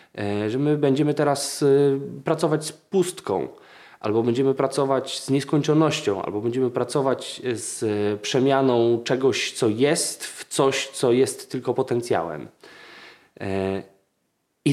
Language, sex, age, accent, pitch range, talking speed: Polish, male, 20-39, native, 115-155 Hz, 110 wpm